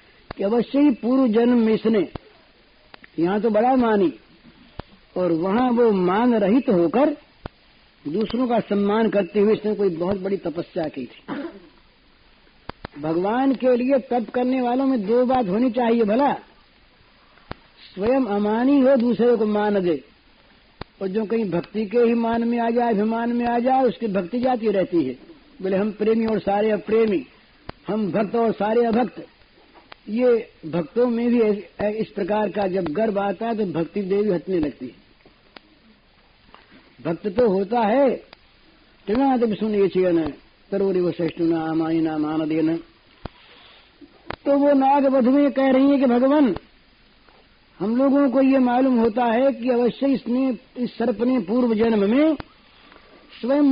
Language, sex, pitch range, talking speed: Hindi, female, 195-250 Hz, 145 wpm